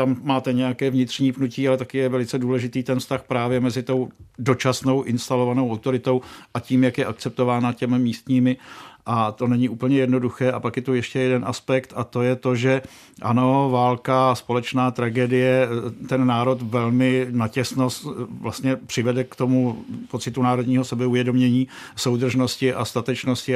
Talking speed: 155 wpm